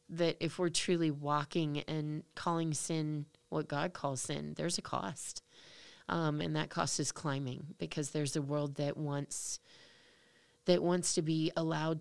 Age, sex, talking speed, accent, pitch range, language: 30-49, female, 160 wpm, American, 145-165 Hz, English